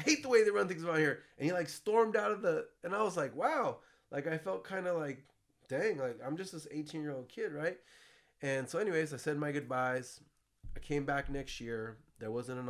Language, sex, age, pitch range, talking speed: English, male, 30-49, 100-130 Hz, 235 wpm